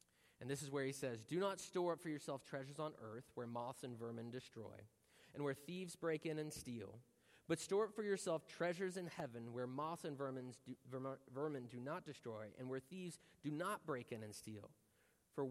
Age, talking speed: 30-49, 215 wpm